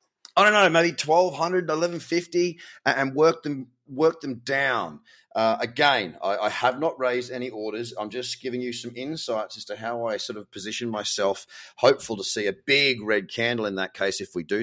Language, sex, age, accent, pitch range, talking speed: English, male, 30-49, Australian, 110-160 Hz, 195 wpm